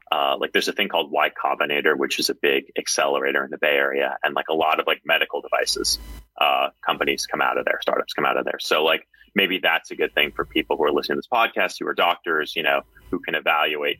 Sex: male